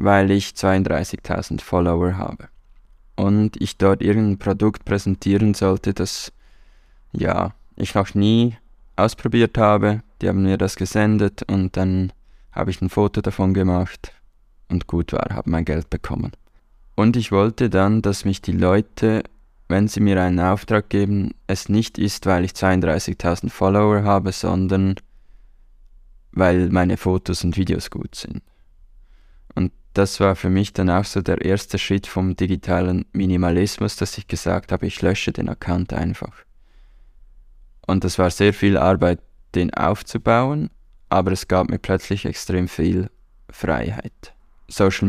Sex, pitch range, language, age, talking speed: male, 90-105 Hz, German, 20-39, 145 wpm